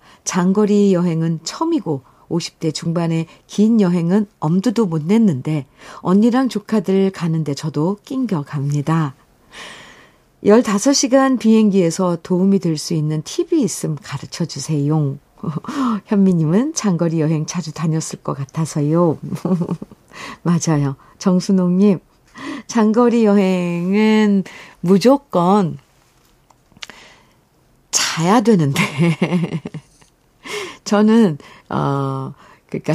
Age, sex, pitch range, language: 50-69, female, 150-205 Hz, Korean